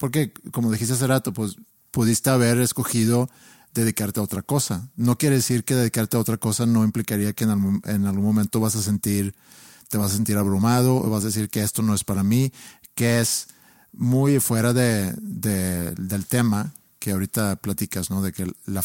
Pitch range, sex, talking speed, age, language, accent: 100-120 Hz, male, 195 wpm, 50-69, Spanish, Mexican